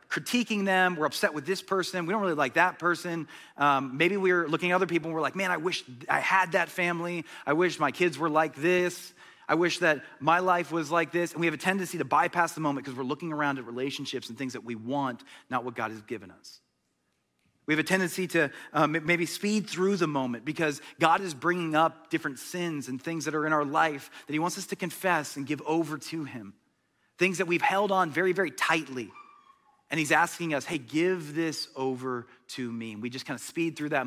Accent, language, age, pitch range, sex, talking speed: American, English, 30-49, 130-175 Hz, male, 235 wpm